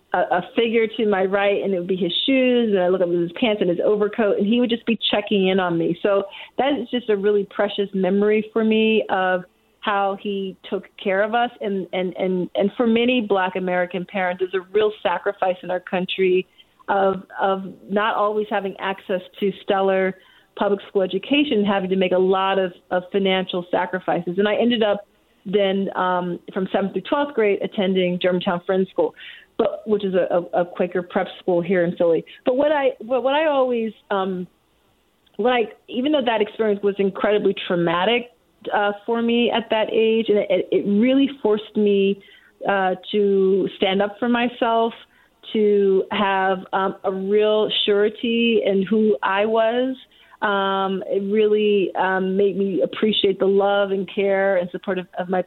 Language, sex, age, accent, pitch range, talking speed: English, female, 30-49, American, 190-220 Hz, 180 wpm